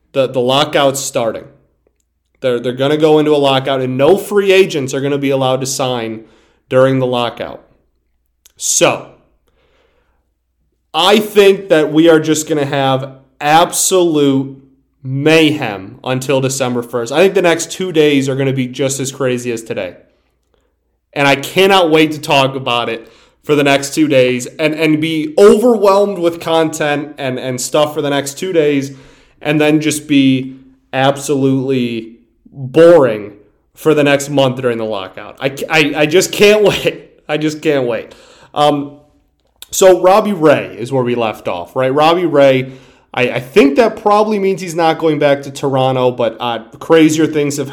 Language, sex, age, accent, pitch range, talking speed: English, male, 30-49, American, 130-155 Hz, 170 wpm